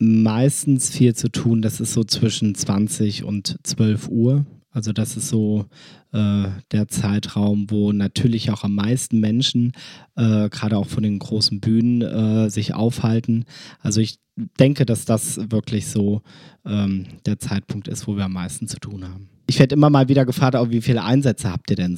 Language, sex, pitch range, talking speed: German, male, 110-130 Hz, 175 wpm